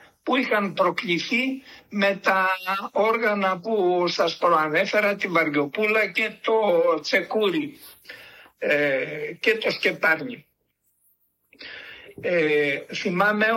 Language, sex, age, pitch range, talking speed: Greek, male, 60-79, 165-220 Hz, 80 wpm